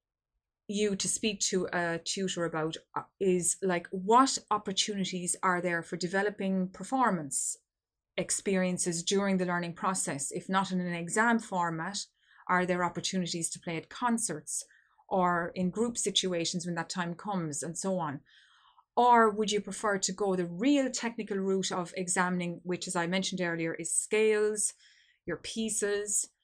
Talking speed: 150 wpm